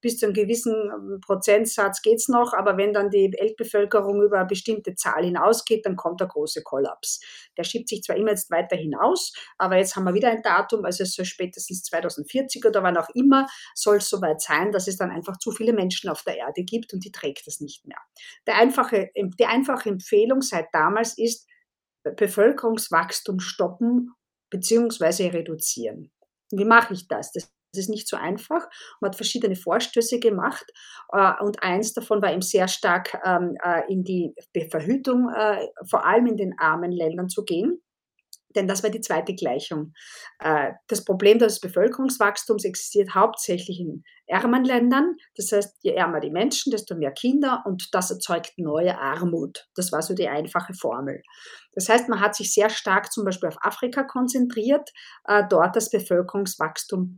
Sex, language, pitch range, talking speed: female, German, 185-230 Hz, 170 wpm